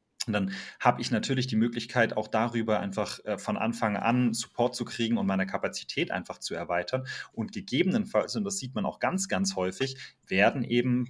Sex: male